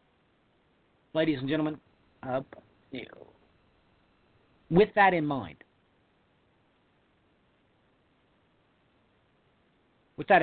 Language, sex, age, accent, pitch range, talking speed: English, male, 50-69, American, 120-170 Hz, 60 wpm